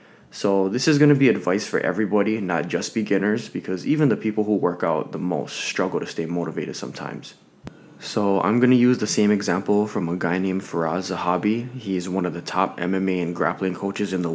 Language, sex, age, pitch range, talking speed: English, male, 20-39, 90-105 Hz, 220 wpm